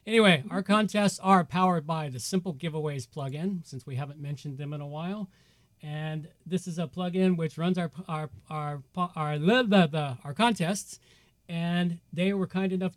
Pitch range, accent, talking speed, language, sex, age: 140-185 Hz, American, 180 wpm, English, male, 40-59